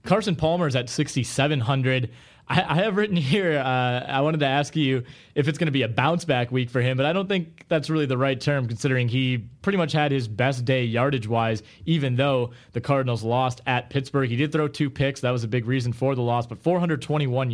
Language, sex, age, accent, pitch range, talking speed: English, male, 20-39, American, 120-140 Hz, 250 wpm